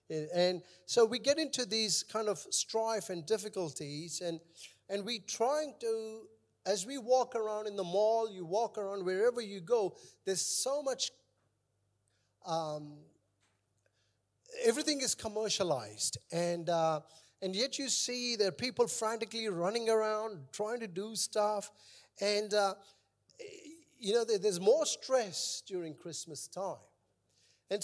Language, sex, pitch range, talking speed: English, male, 165-225 Hz, 135 wpm